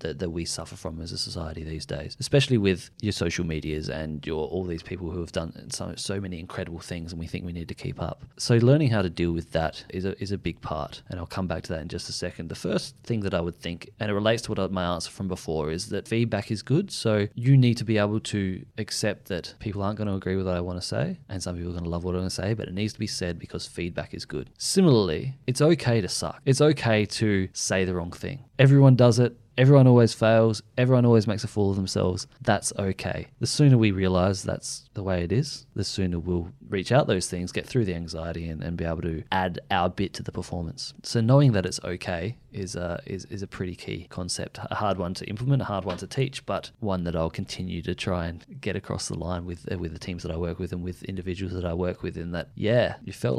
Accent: Australian